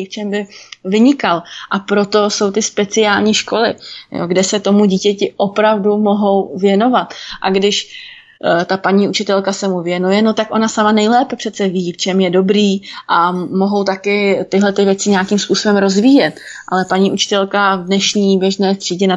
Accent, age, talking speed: native, 20-39, 160 wpm